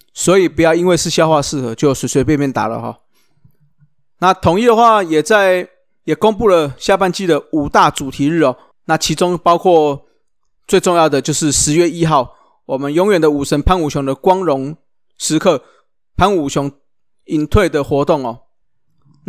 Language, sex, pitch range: Chinese, male, 145-180 Hz